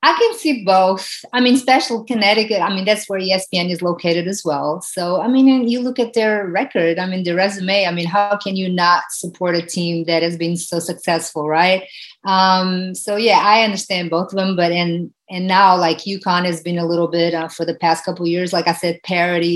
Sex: female